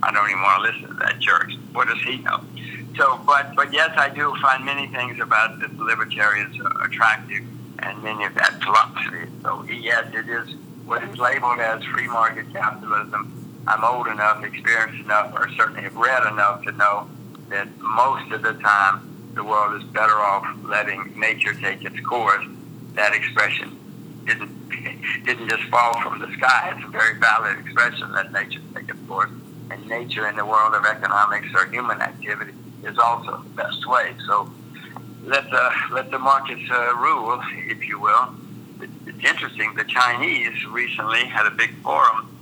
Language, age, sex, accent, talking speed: English, 60-79, male, American, 175 wpm